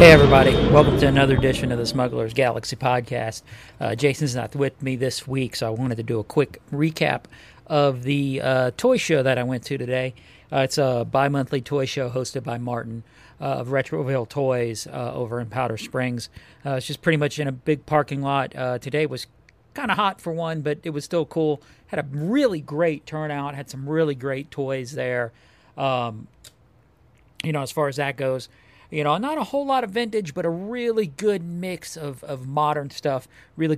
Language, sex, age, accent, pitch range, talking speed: English, male, 40-59, American, 125-150 Hz, 205 wpm